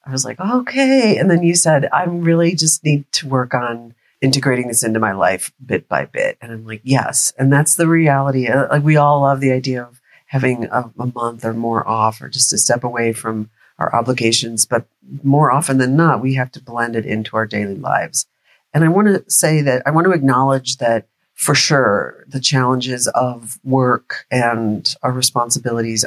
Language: English